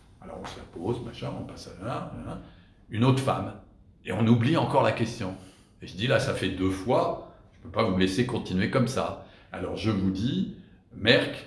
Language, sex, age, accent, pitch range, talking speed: French, male, 60-79, French, 95-120 Hz, 220 wpm